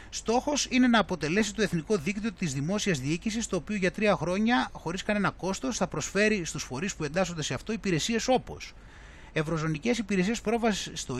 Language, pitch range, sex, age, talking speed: Greek, 155-220 Hz, male, 30-49, 170 wpm